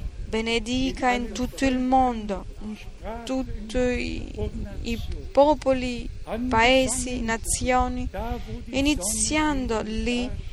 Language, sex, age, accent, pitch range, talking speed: Italian, female, 20-39, native, 195-250 Hz, 80 wpm